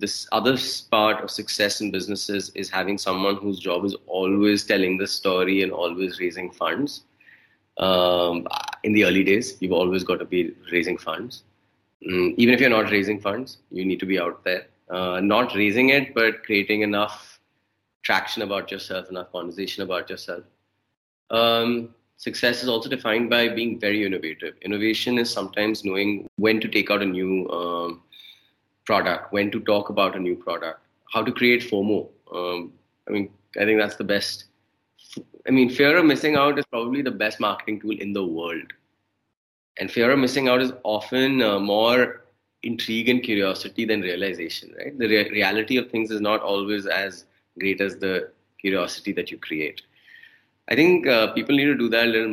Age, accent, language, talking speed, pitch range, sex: 30-49, Indian, English, 175 wpm, 95-115 Hz, male